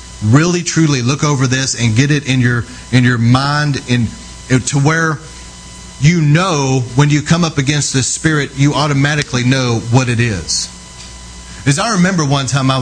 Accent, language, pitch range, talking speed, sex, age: American, English, 90-135 Hz, 180 wpm, male, 30-49